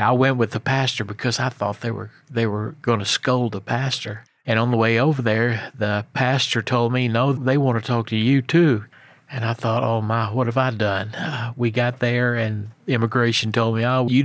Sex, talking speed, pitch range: male, 230 wpm, 110-125 Hz